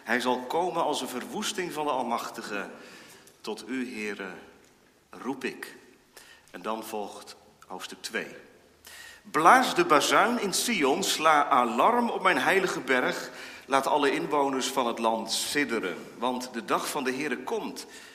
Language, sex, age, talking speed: Dutch, male, 40-59, 145 wpm